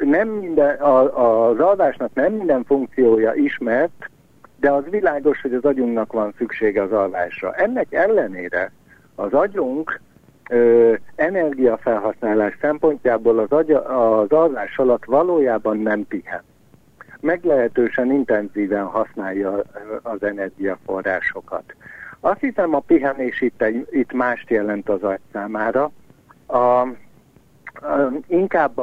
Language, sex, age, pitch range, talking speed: Hungarian, male, 60-79, 110-140 Hz, 95 wpm